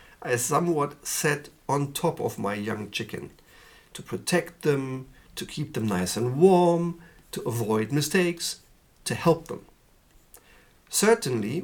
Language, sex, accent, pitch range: German, male, German, 125-175 Hz